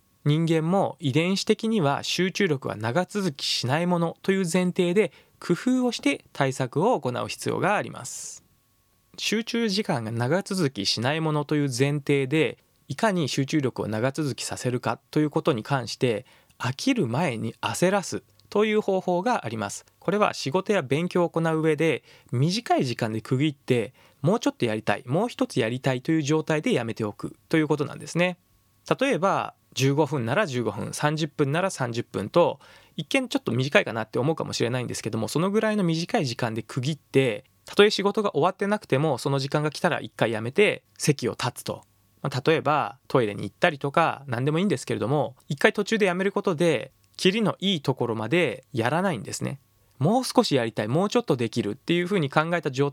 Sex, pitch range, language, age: male, 125-185 Hz, Japanese, 20-39